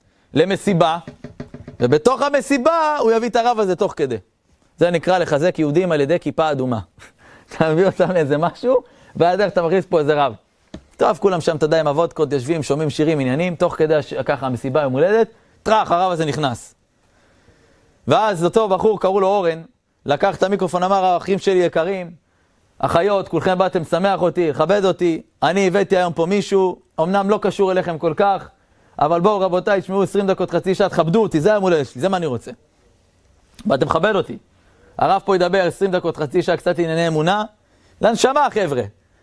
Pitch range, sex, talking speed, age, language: 155-200 Hz, male, 175 wpm, 30-49, Hebrew